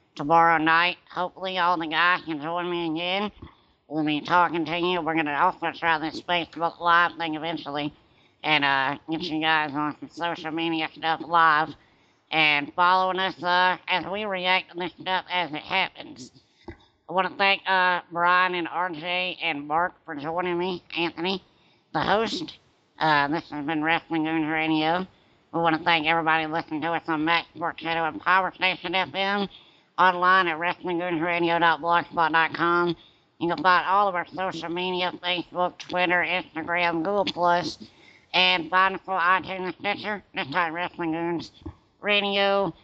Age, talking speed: 60-79, 160 wpm